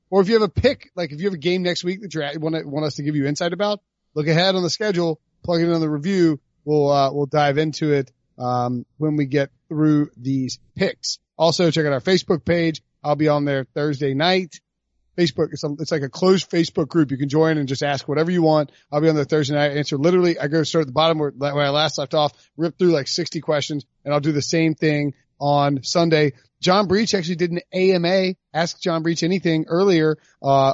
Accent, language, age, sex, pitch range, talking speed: American, English, 30-49, male, 140-170 Hz, 245 wpm